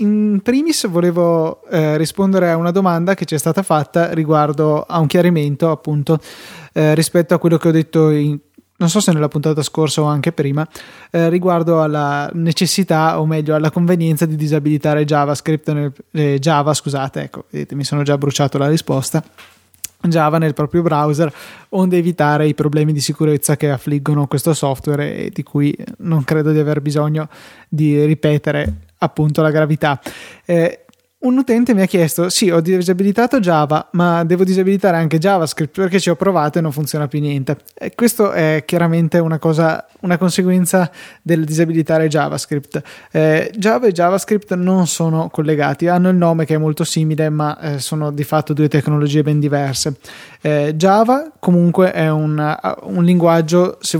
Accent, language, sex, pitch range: native, Italian, male, 150-170 Hz